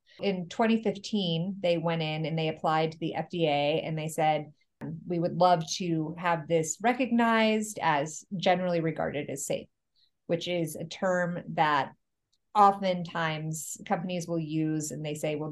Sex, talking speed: female, 150 wpm